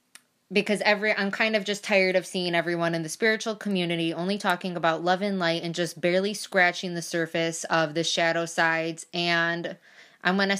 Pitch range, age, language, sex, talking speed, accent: 170-205 Hz, 20-39, English, female, 190 wpm, American